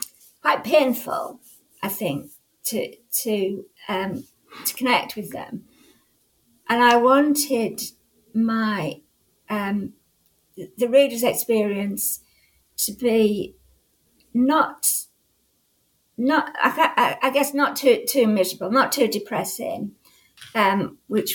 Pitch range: 185-245 Hz